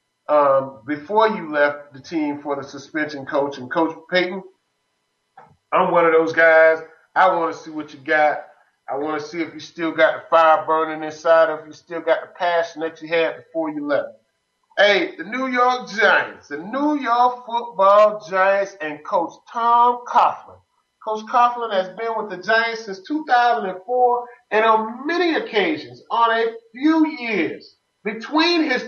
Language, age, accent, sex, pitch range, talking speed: English, 30-49, American, male, 160-230 Hz, 170 wpm